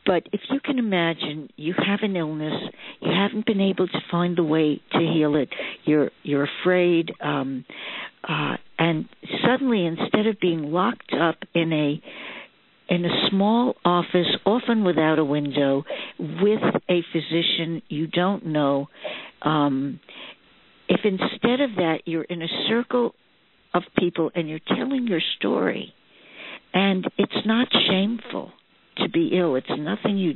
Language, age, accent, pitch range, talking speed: English, 60-79, American, 160-210 Hz, 145 wpm